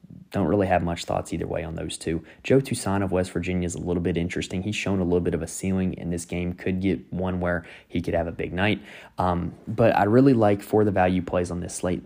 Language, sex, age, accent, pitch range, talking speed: English, male, 20-39, American, 85-100 Hz, 265 wpm